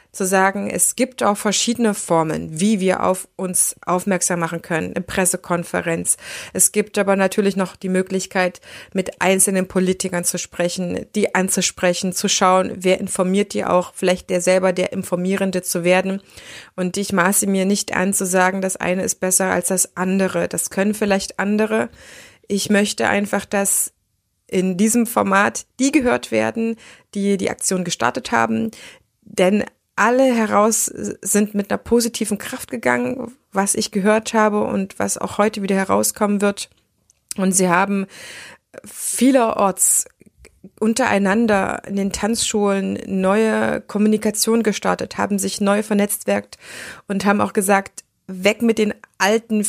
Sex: female